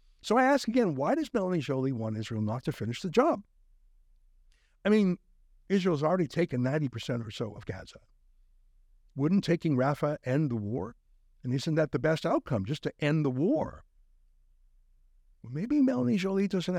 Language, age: English, 60-79